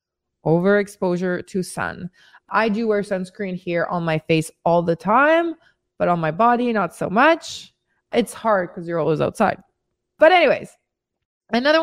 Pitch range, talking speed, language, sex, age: 195-265 Hz, 150 wpm, English, female, 20-39